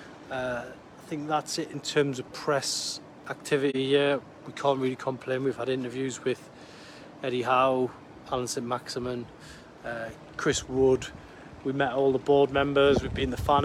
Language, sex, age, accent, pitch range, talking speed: English, male, 30-49, British, 120-145 Hz, 165 wpm